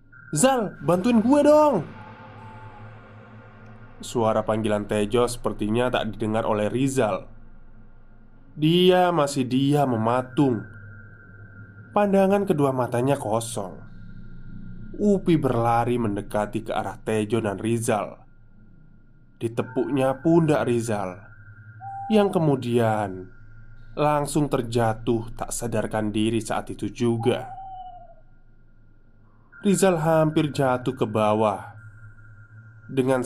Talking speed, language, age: 85 wpm, Indonesian, 20-39